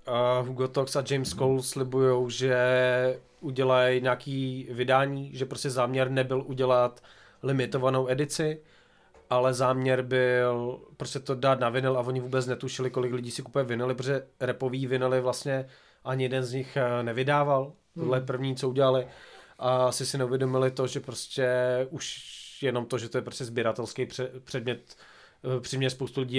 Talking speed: 150 wpm